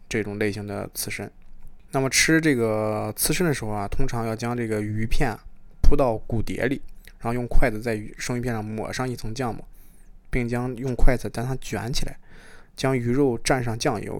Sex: male